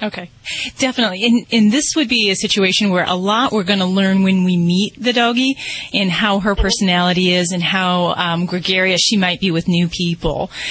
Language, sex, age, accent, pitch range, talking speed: English, female, 30-49, American, 175-210 Hz, 200 wpm